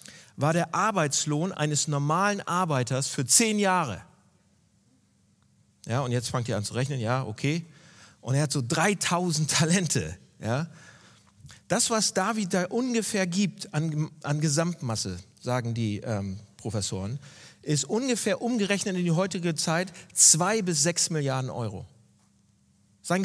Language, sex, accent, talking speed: German, male, German, 135 wpm